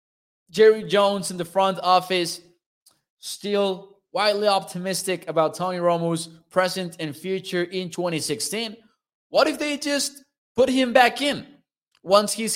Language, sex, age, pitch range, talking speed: English, male, 20-39, 155-195 Hz, 130 wpm